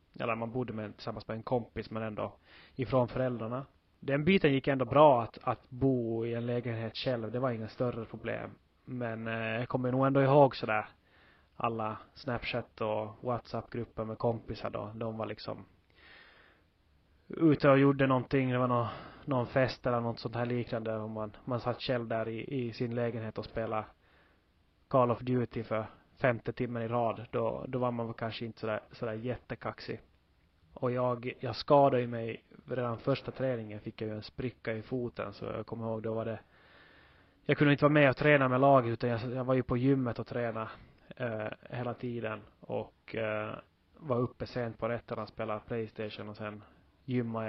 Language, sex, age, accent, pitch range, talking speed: Swedish, male, 20-39, native, 110-125 Hz, 185 wpm